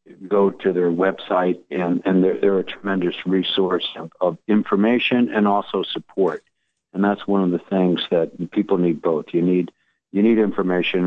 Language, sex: English, male